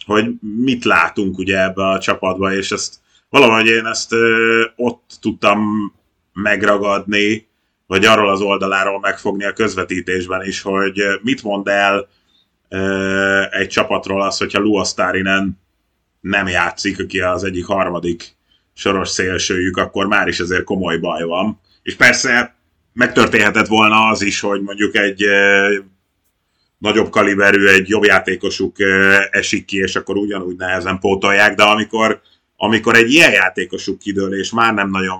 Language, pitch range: Hungarian, 95-105 Hz